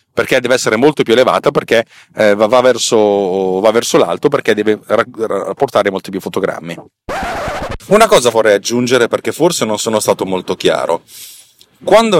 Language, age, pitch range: Italian, 30-49, 100-125 Hz